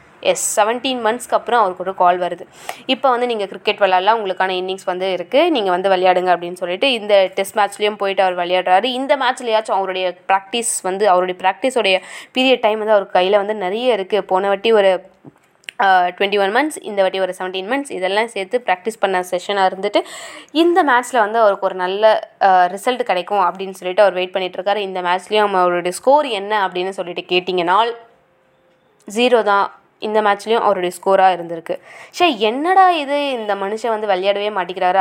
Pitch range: 185-230 Hz